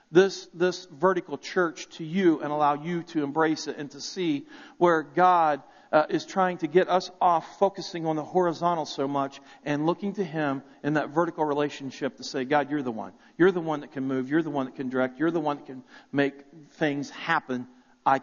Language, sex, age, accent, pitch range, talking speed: English, male, 40-59, American, 155-215 Hz, 215 wpm